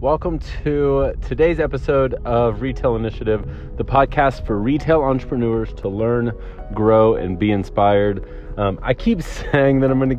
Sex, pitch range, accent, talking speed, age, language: male, 95-125 Hz, American, 145 wpm, 30-49, English